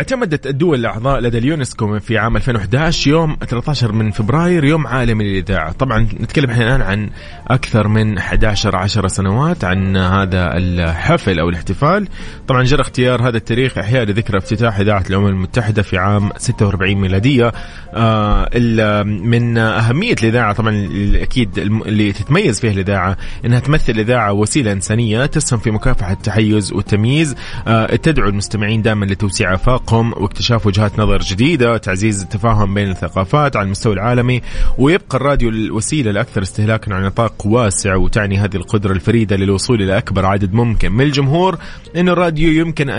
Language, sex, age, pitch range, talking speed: English, male, 30-49, 100-125 Hz, 140 wpm